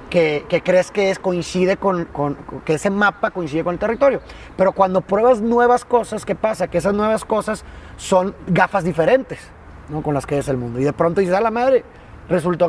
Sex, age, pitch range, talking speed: male, 30-49, 150-200 Hz, 210 wpm